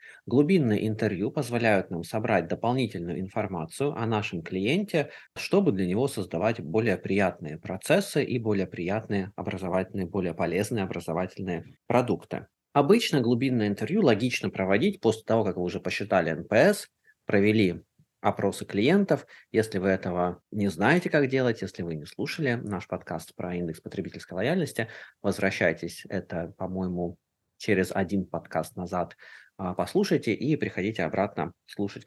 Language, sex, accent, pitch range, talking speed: Russian, male, native, 90-115 Hz, 130 wpm